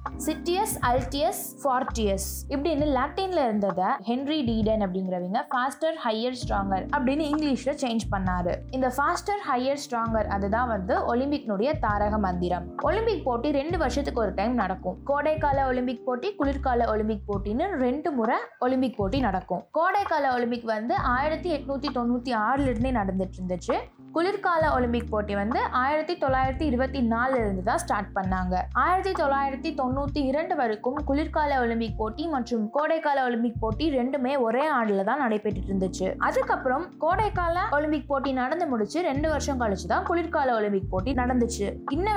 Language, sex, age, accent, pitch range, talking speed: Tamil, female, 20-39, native, 220-300 Hz, 105 wpm